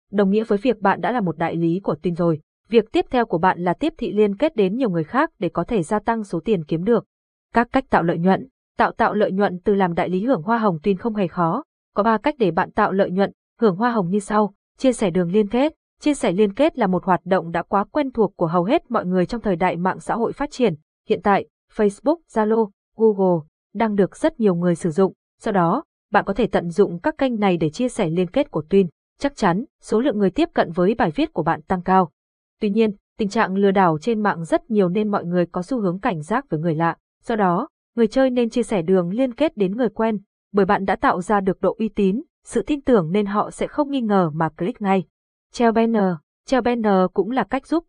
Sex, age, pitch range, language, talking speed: female, 20-39, 185-235 Hz, Vietnamese, 255 wpm